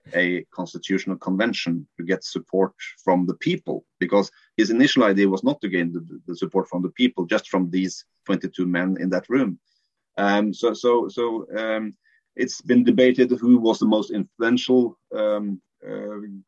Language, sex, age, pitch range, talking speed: English, male, 30-49, 95-125 Hz, 170 wpm